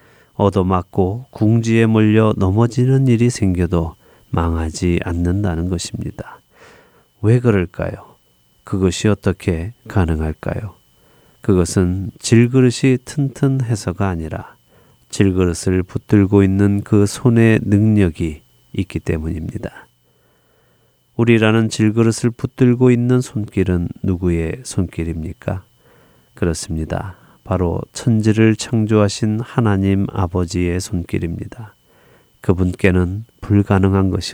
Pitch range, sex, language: 85-110 Hz, male, Korean